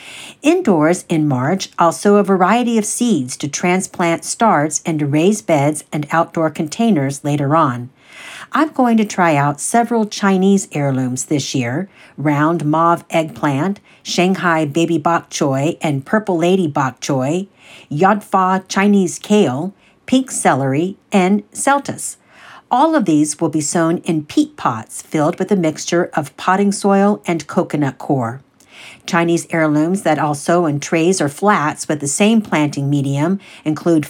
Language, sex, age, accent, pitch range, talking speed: English, female, 50-69, American, 150-195 Hz, 150 wpm